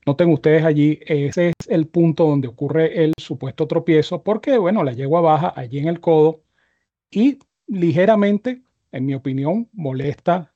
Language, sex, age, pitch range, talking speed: Spanish, male, 40-59, 140-175 Hz, 160 wpm